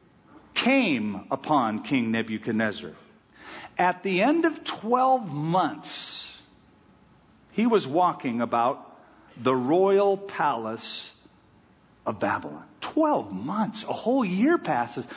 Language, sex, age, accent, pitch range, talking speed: English, male, 50-69, American, 155-230 Hz, 100 wpm